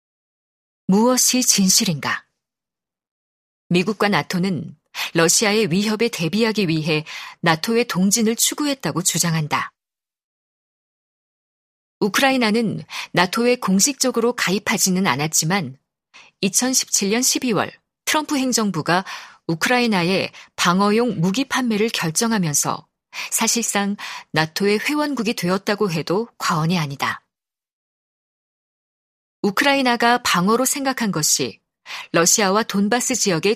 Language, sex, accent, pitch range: Korean, female, native, 175-235 Hz